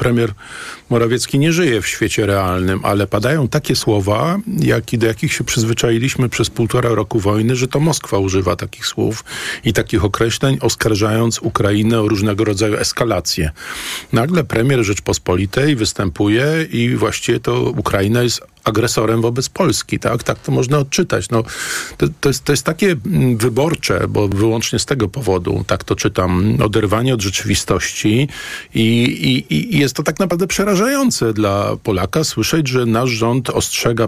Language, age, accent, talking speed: Polish, 40-59, native, 145 wpm